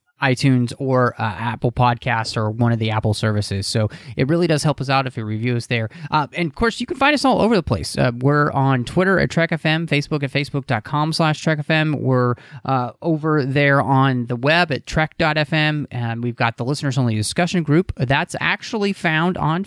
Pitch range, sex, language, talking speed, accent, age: 120-160 Hz, male, English, 205 wpm, American, 30-49